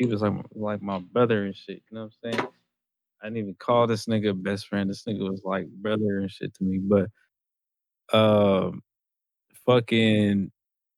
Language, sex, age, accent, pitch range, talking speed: English, male, 20-39, American, 105-125 Hz, 180 wpm